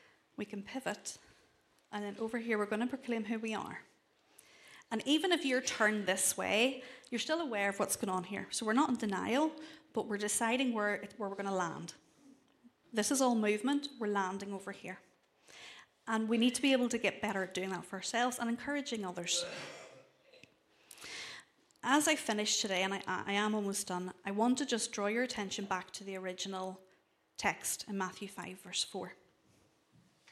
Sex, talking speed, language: female, 190 wpm, English